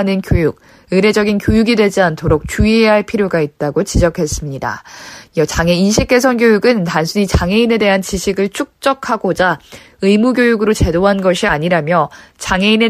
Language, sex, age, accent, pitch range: Korean, female, 20-39, native, 175-225 Hz